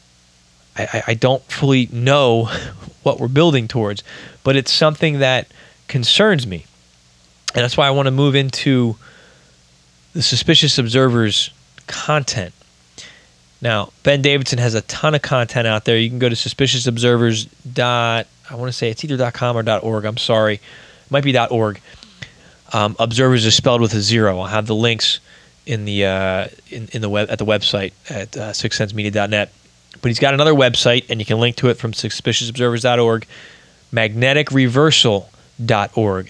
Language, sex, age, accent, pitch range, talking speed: English, male, 20-39, American, 105-135 Hz, 160 wpm